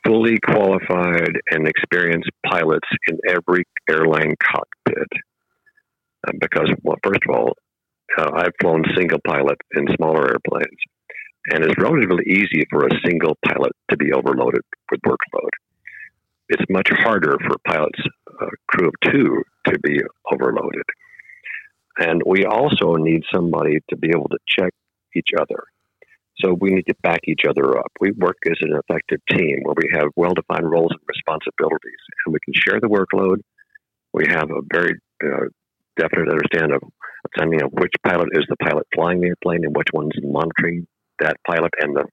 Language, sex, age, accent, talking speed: English, male, 50-69, American, 155 wpm